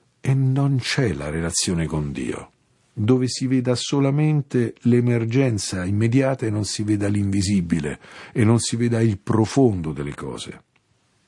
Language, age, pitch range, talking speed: Italian, 50-69, 95-130 Hz, 140 wpm